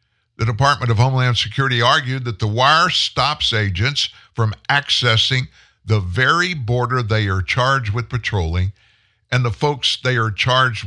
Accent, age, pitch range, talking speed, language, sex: American, 50-69, 100-125 Hz, 150 wpm, English, male